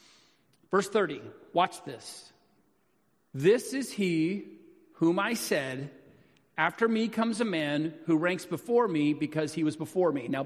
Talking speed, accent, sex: 145 wpm, American, male